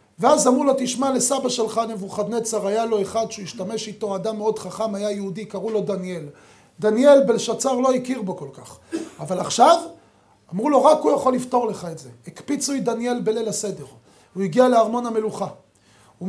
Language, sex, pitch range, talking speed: Hebrew, male, 190-245 Hz, 180 wpm